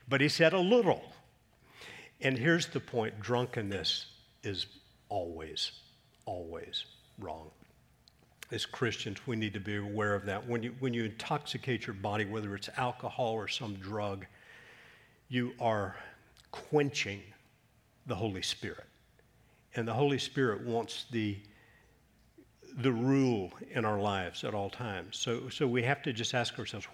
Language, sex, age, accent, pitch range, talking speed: English, male, 50-69, American, 105-125 Hz, 145 wpm